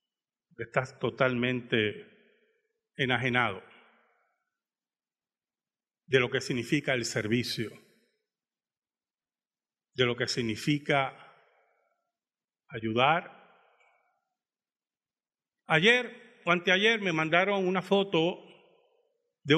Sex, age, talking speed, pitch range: male, 40-59, 65 wpm, 150-235 Hz